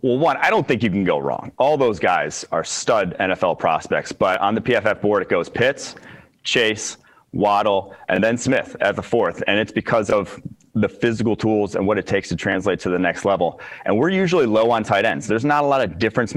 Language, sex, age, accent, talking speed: English, male, 30-49, American, 225 wpm